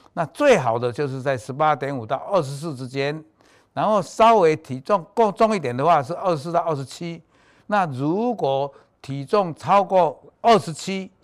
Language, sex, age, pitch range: Chinese, male, 60-79, 135-195 Hz